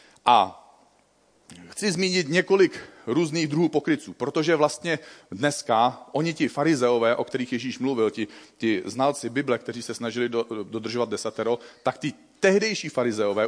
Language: Czech